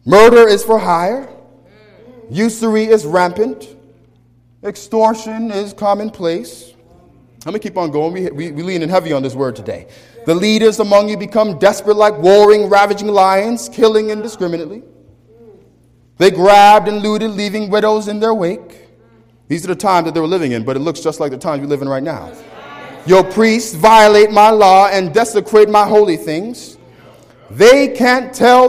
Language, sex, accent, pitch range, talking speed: English, male, American, 170-225 Hz, 165 wpm